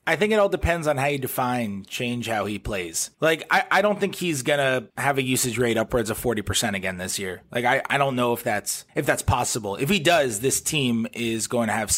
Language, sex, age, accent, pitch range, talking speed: English, male, 20-39, American, 110-140 Hz, 250 wpm